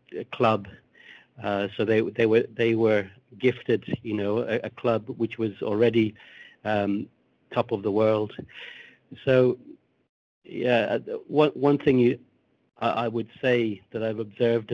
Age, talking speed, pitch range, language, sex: 60-79, 140 wpm, 110-125 Hz, English, male